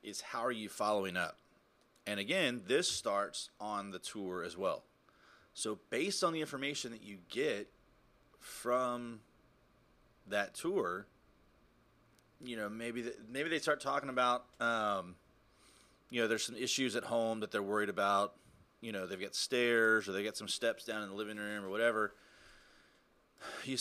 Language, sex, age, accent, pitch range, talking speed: English, male, 30-49, American, 100-125 Hz, 160 wpm